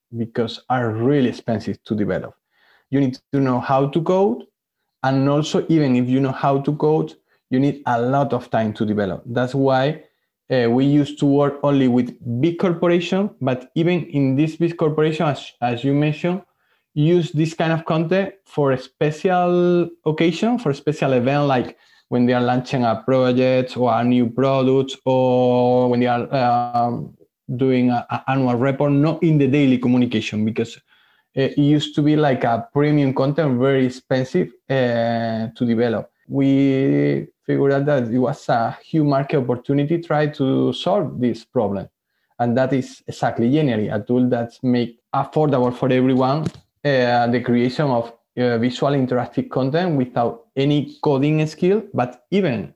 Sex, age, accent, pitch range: male, 20-39, Spanish, 125-150 Hz